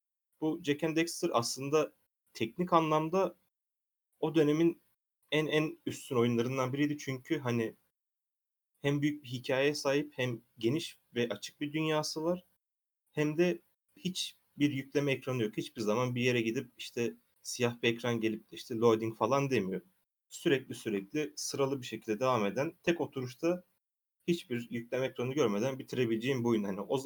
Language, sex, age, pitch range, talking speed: Turkish, male, 30-49, 110-150 Hz, 145 wpm